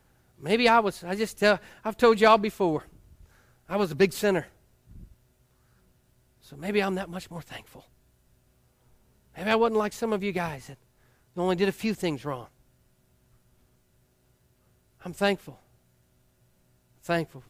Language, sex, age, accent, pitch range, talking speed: English, male, 40-59, American, 130-205 Hz, 135 wpm